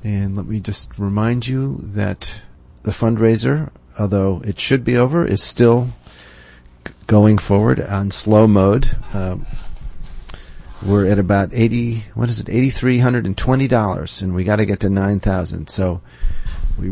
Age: 40-59